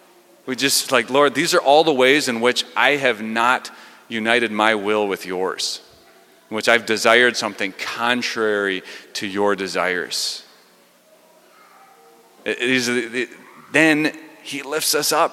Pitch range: 110-150 Hz